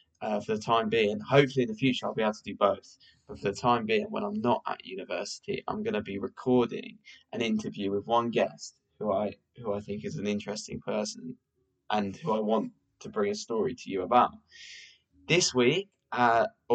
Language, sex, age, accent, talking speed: English, male, 10-29, British, 210 wpm